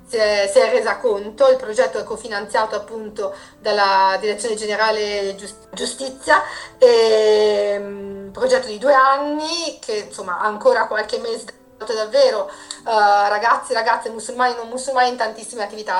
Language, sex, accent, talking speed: Italian, female, native, 145 wpm